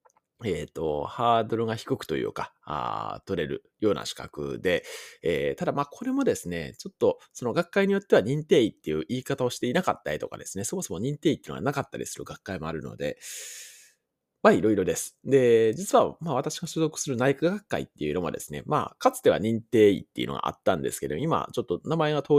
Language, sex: Japanese, male